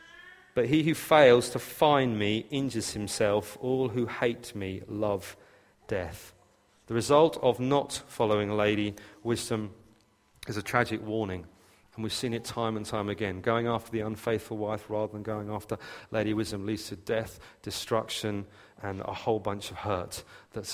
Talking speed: 160 wpm